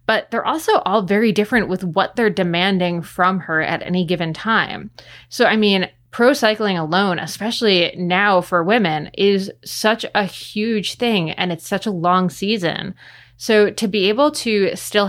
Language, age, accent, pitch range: English, 20-39, American, 175-225 Hz